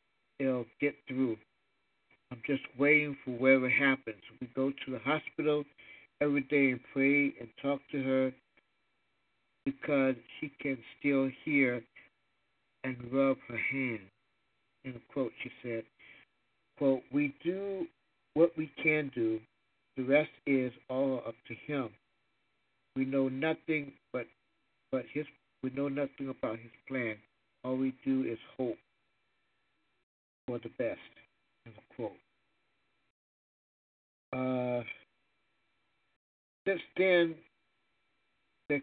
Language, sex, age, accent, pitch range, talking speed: English, male, 60-79, American, 125-145 Hz, 115 wpm